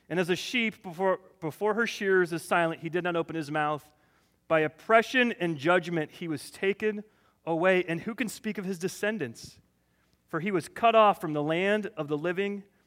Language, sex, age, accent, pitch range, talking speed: English, male, 30-49, American, 155-210 Hz, 195 wpm